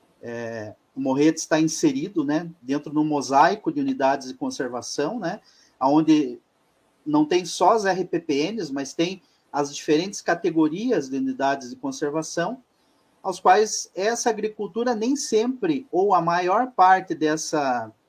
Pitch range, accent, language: 150-215 Hz, Brazilian, Portuguese